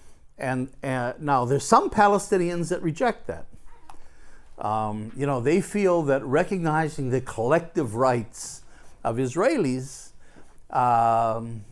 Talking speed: 115 wpm